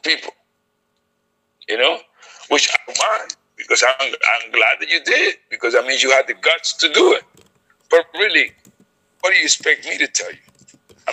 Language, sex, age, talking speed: Swahili, male, 60-79, 180 wpm